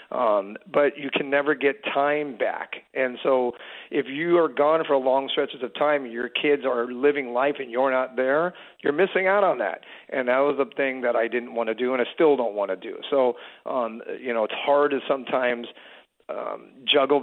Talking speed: 210 wpm